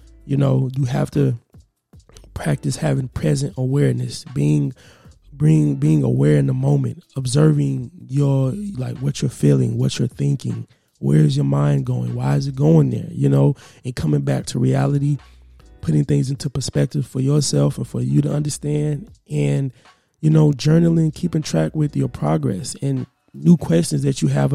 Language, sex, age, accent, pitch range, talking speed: English, male, 20-39, American, 105-150 Hz, 165 wpm